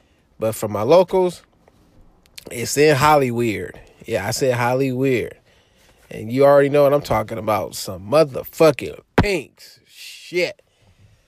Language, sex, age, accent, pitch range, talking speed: English, male, 20-39, American, 125-165 Hz, 120 wpm